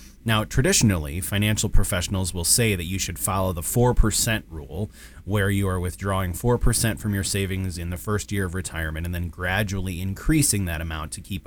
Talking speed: 195 wpm